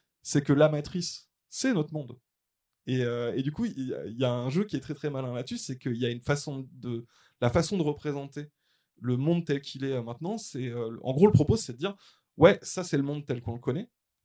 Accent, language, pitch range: French, French, 120-145 Hz